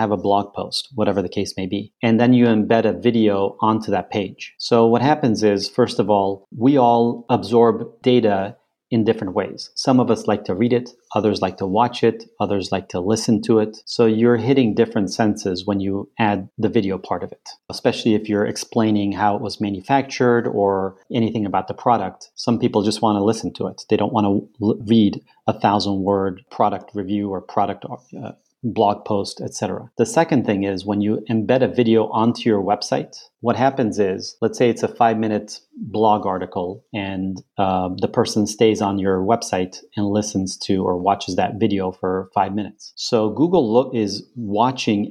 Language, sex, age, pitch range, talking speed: English, male, 40-59, 100-115 Hz, 195 wpm